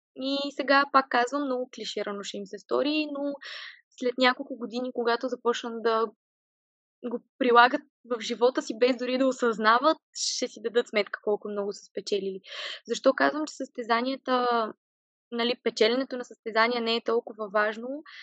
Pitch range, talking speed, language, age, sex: 220-265 Hz, 150 wpm, Bulgarian, 20-39, female